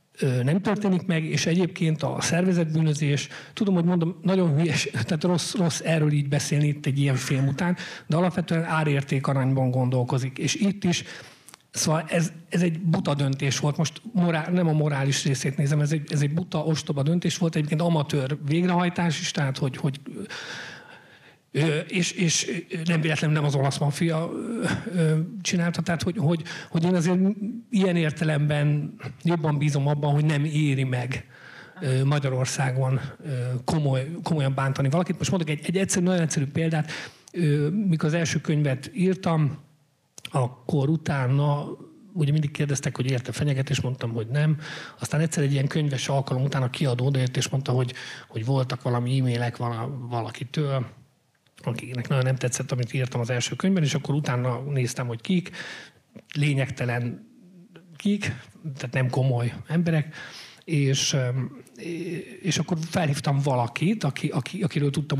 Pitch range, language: 135-170 Hz, Hungarian